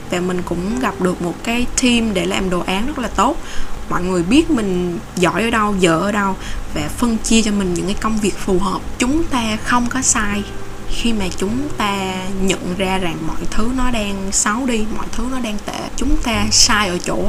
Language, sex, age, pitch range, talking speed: Vietnamese, female, 10-29, 175-230 Hz, 220 wpm